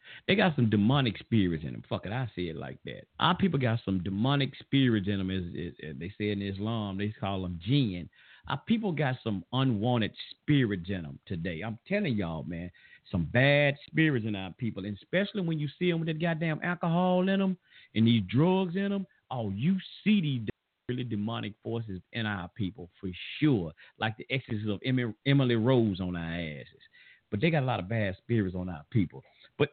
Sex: male